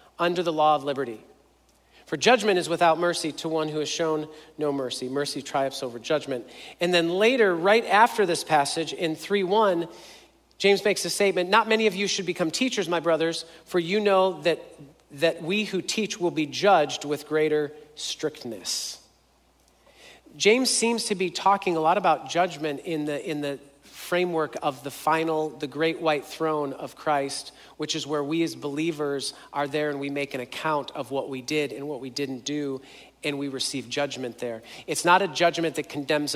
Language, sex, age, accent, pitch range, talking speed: English, male, 40-59, American, 140-170 Hz, 190 wpm